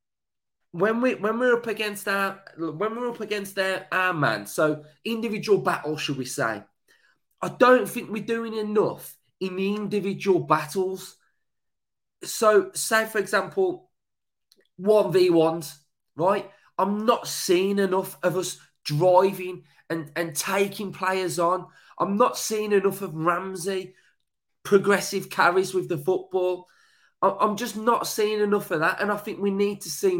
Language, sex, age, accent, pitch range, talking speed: English, male, 20-39, British, 175-210 Hz, 145 wpm